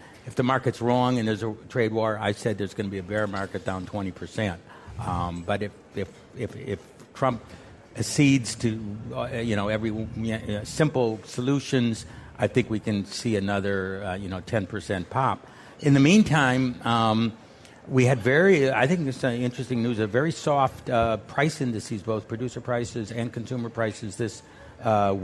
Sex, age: male, 60-79